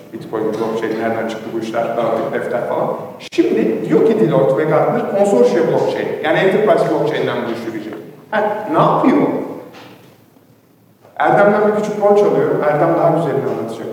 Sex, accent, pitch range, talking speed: male, native, 150-215 Hz, 145 wpm